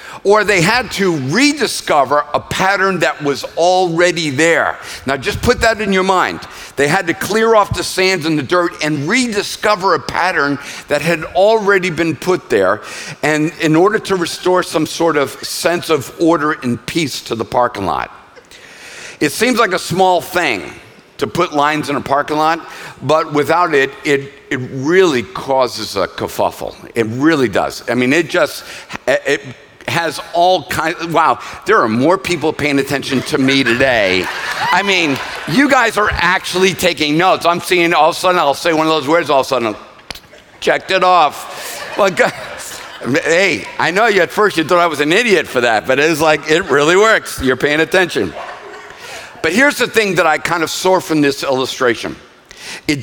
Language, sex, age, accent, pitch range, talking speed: English, male, 50-69, American, 150-190 Hz, 185 wpm